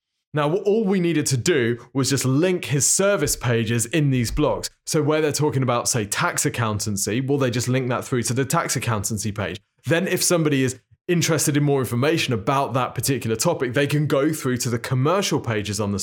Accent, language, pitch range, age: British, English, 115-150 Hz, 20-39